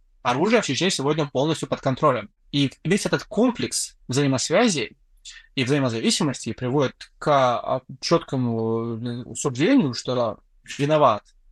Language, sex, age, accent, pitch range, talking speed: Russian, male, 20-39, native, 135-195 Hz, 105 wpm